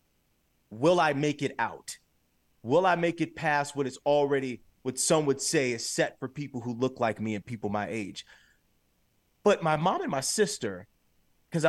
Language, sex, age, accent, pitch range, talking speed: English, male, 30-49, American, 115-165 Hz, 185 wpm